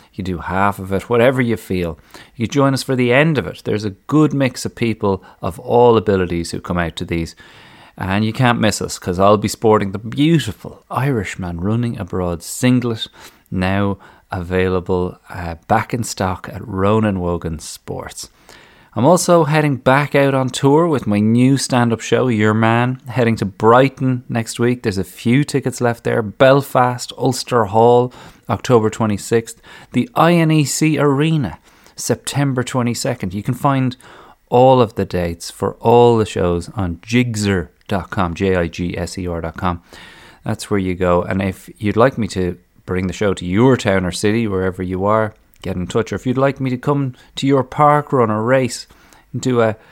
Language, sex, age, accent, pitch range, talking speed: English, male, 30-49, Irish, 95-130 Hz, 175 wpm